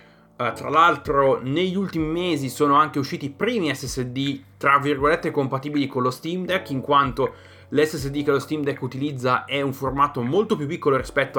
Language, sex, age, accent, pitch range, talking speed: Italian, male, 30-49, native, 125-155 Hz, 180 wpm